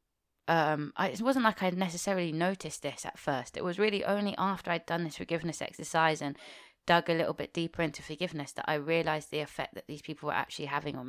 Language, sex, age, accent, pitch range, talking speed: English, female, 20-39, British, 145-175 Hz, 220 wpm